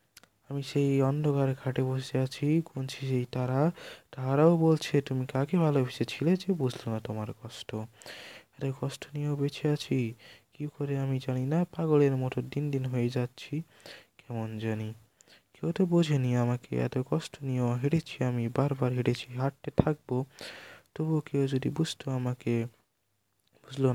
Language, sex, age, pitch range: Bengali, male, 20-39, 120-150 Hz